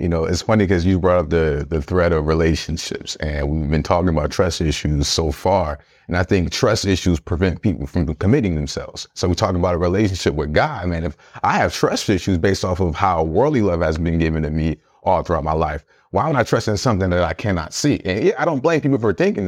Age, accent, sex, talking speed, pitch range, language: 30-49, American, male, 245 wpm, 85-120 Hz, English